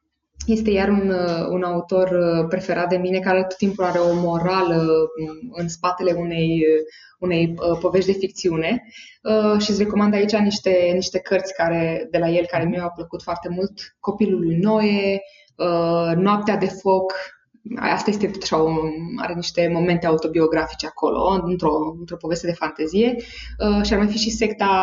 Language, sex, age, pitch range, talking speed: Romanian, female, 20-39, 170-215 Hz, 155 wpm